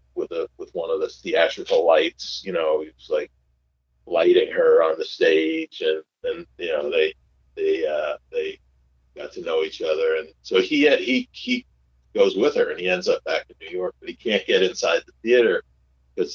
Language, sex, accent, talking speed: English, male, American, 200 wpm